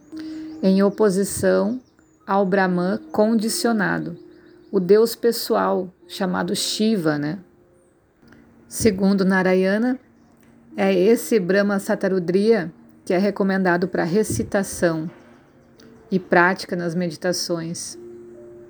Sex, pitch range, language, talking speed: female, 180-210 Hz, Portuguese, 85 wpm